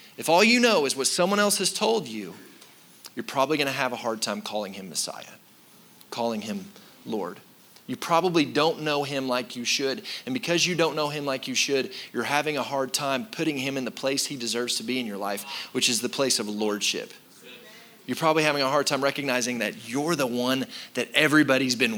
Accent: American